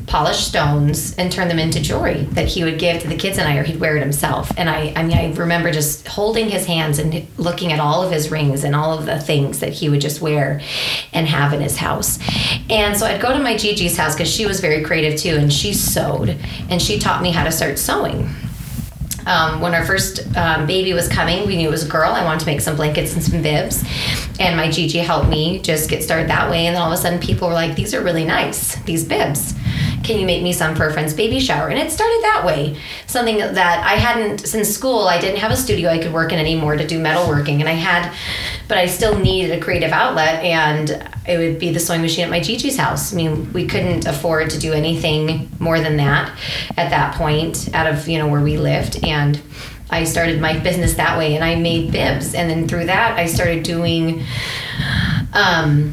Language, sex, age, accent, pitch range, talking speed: English, female, 30-49, American, 155-175 Hz, 235 wpm